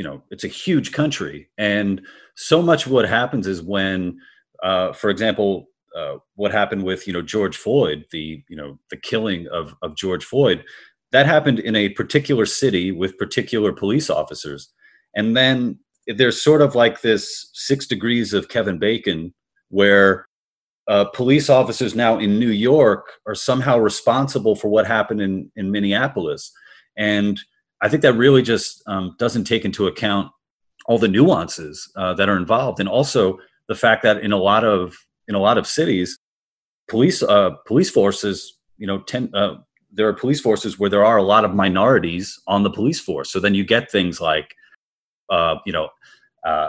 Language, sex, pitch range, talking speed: English, male, 95-115 Hz, 175 wpm